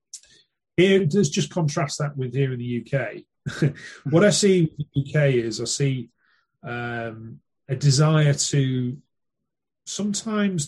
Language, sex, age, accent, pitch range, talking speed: English, male, 30-49, British, 125-155 Hz, 135 wpm